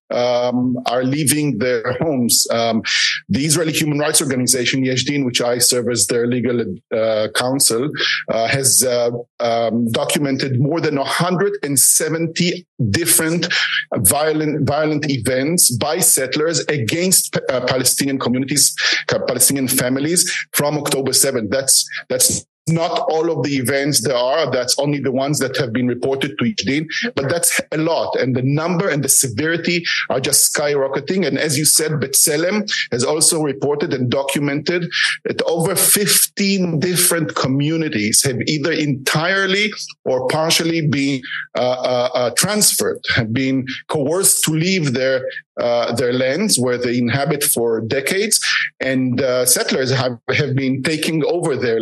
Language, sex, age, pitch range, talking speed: English, male, 50-69, 130-165 Hz, 145 wpm